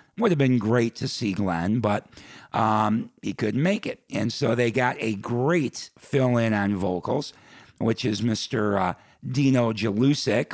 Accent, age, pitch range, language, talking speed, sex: American, 50-69, 110-130 Hz, English, 160 wpm, male